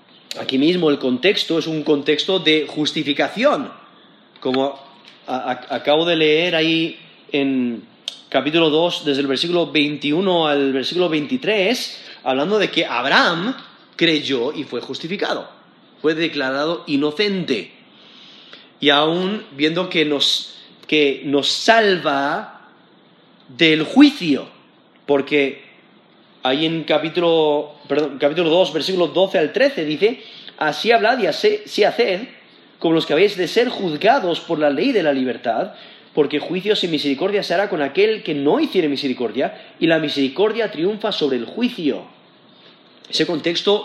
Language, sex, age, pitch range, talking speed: Spanish, male, 30-49, 145-190 Hz, 130 wpm